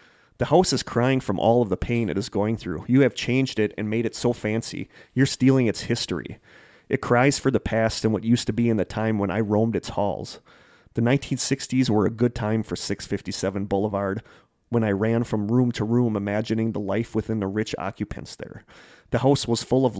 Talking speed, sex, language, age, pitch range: 220 wpm, male, English, 30-49, 100-120 Hz